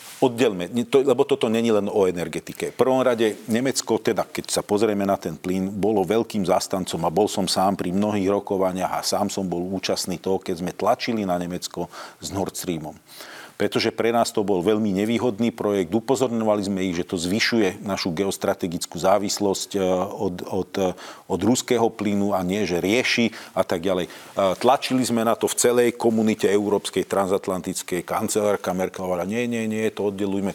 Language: Slovak